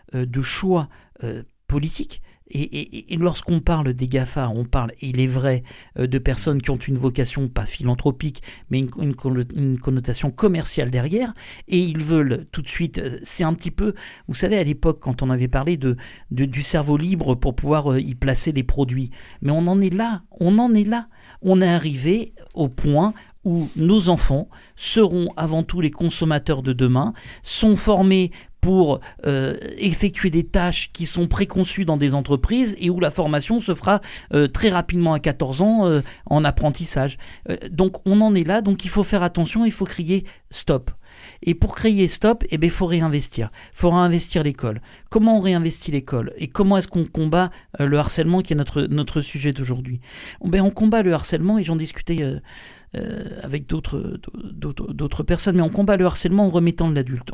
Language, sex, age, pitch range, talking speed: French, male, 50-69, 135-185 Hz, 195 wpm